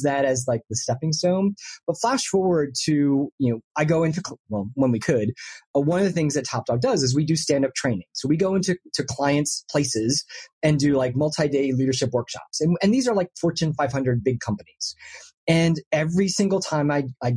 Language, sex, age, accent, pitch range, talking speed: English, male, 30-49, American, 130-170 Hz, 220 wpm